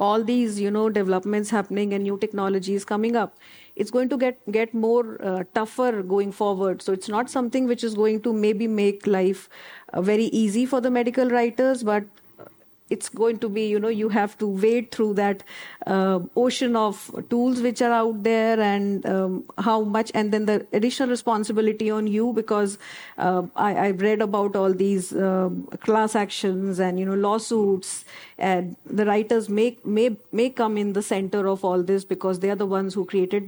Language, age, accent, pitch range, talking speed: English, 40-59, Indian, 200-230 Hz, 185 wpm